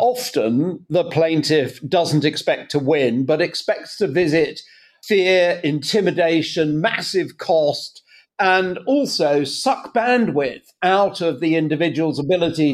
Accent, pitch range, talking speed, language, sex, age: British, 140-185 Hz, 115 wpm, English, male, 50-69